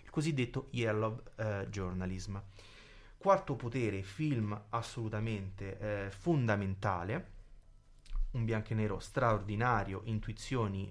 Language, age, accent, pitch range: Italian, 30-49, native, 105-130 Hz